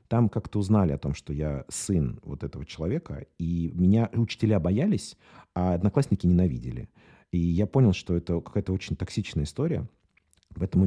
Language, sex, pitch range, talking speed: Russian, male, 80-105 Hz, 155 wpm